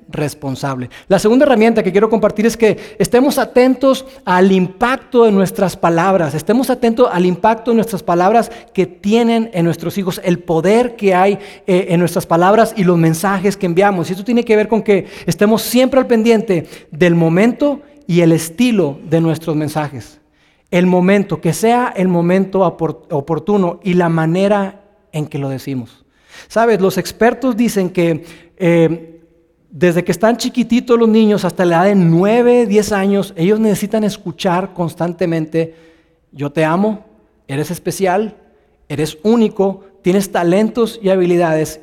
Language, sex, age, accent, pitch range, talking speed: Spanish, male, 40-59, Mexican, 165-210 Hz, 155 wpm